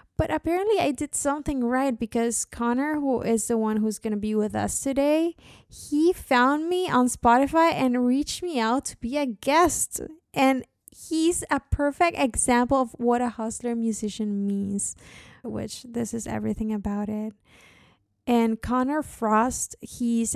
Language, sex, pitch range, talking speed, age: English, female, 220-270 Hz, 155 wpm, 20-39